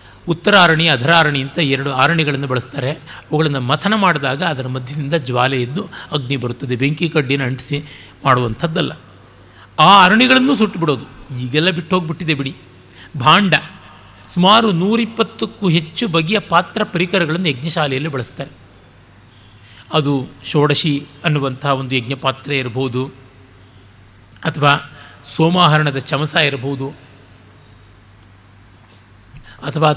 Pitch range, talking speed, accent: 130-175 Hz, 90 wpm, native